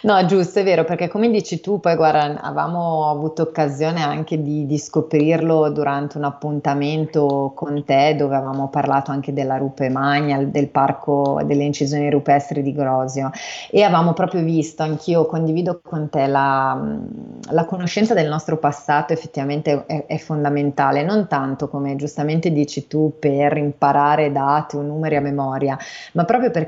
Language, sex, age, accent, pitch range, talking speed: Italian, female, 30-49, native, 145-165 Hz, 155 wpm